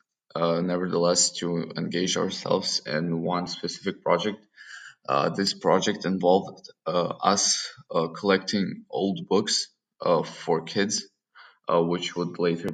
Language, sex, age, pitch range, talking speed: Ukrainian, male, 20-39, 85-95 Hz, 120 wpm